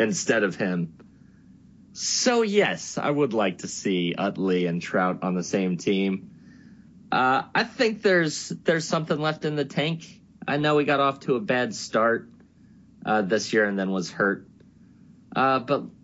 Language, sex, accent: English, male, American